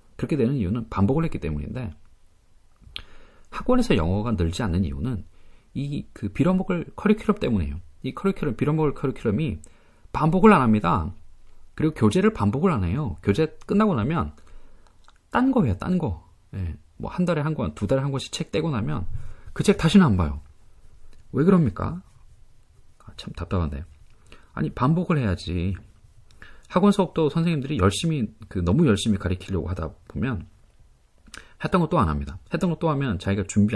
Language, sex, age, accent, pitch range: Korean, male, 30-49, native, 90-135 Hz